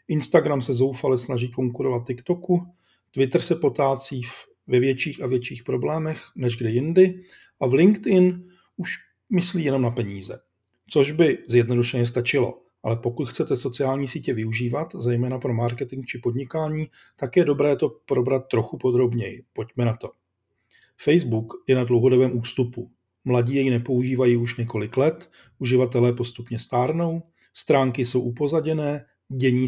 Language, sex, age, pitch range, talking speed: Czech, male, 40-59, 120-145 Hz, 140 wpm